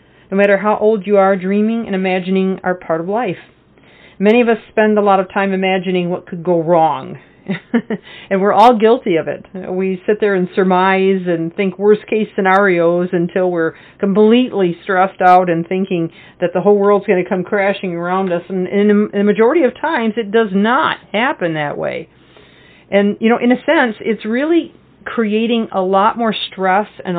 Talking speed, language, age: 185 wpm, English, 50-69